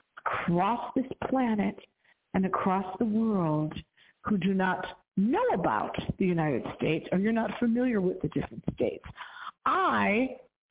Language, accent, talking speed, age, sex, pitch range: English, American, 135 wpm, 50-69, female, 190-260 Hz